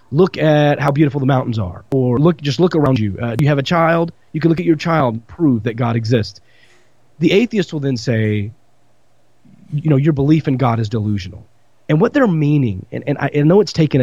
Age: 30-49